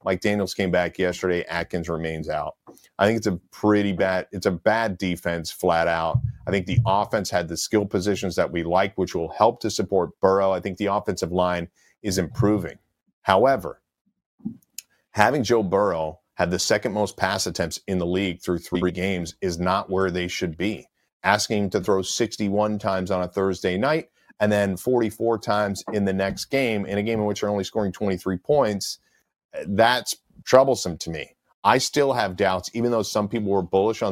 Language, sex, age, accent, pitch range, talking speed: English, male, 40-59, American, 90-105 Hz, 195 wpm